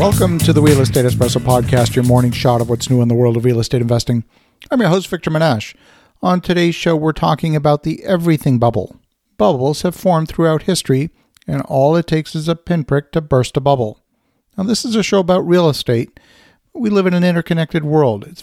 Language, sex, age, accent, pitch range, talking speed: English, male, 50-69, American, 140-170 Hz, 210 wpm